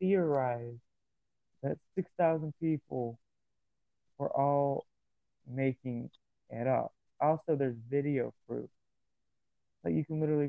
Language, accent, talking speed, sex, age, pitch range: English, American, 105 wpm, male, 20-39, 120-145 Hz